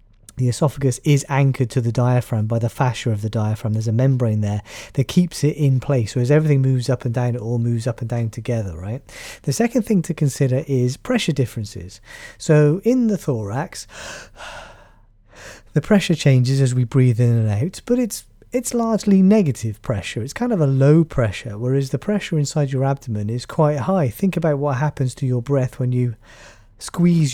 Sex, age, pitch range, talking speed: male, 30-49, 120-155 Hz, 195 wpm